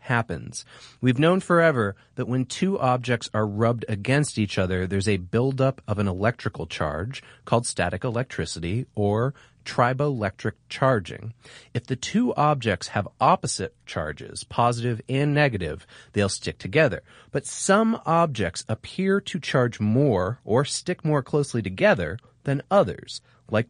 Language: English